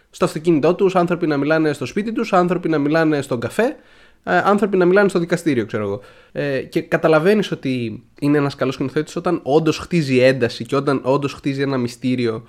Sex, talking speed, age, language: male, 185 wpm, 20-39, Greek